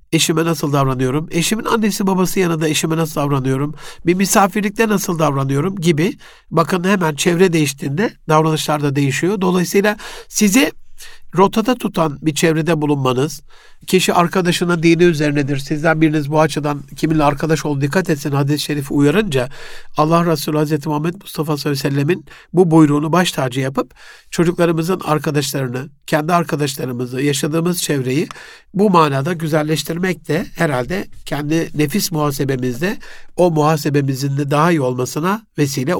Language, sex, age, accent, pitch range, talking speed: Turkish, male, 60-79, native, 145-180 Hz, 130 wpm